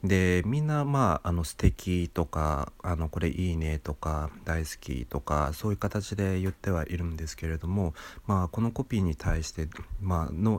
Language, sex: Japanese, male